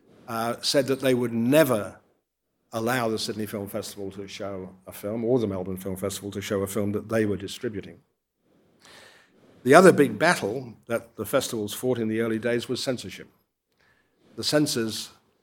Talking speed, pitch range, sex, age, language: 170 wpm, 105-125 Hz, male, 50-69, English